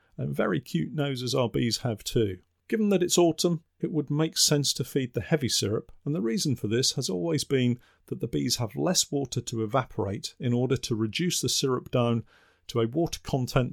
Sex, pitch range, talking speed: male, 110-140 Hz, 210 wpm